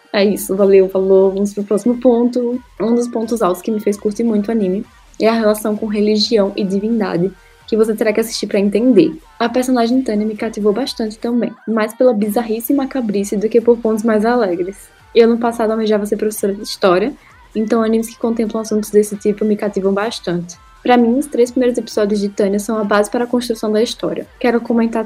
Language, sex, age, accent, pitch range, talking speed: Portuguese, female, 10-29, Brazilian, 205-235 Hz, 210 wpm